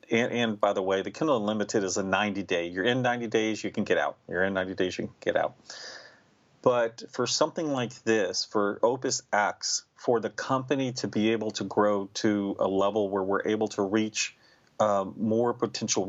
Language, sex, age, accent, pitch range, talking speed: English, male, 40-59, American, 100-115 Hz, 200 wpm